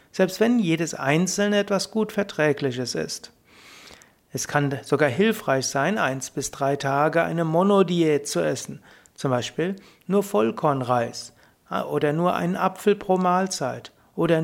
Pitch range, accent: 135-180 Hz, German